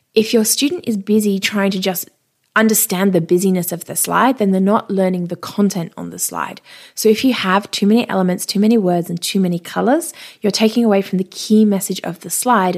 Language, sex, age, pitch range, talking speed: English, female, 20-39, 185-225 Hz, 220 wpm